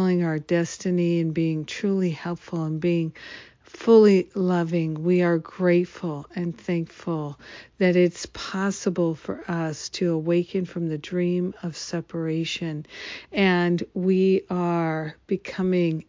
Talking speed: 115 wpm